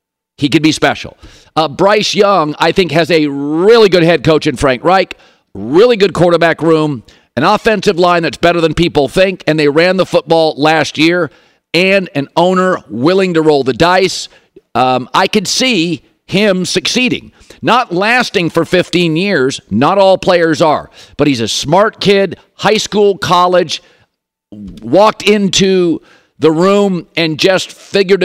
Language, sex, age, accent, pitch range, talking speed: English, male, 50-69, American, 155-205 Hz, 160 wpm